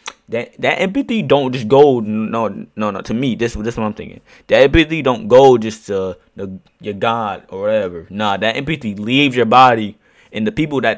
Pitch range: 110-135 Hz